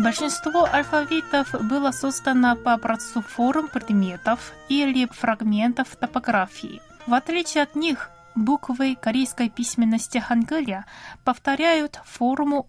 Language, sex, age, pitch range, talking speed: Russian, female, 20-39, 215-275 Hz, 100 wpm